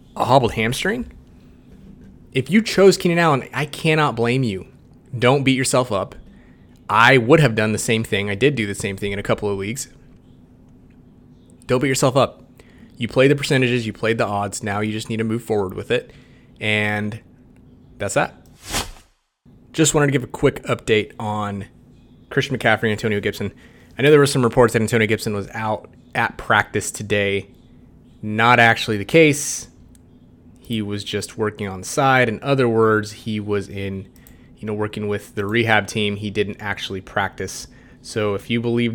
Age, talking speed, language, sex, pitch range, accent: 20-39, 180 wpm, English, male, 105-125 Hz, American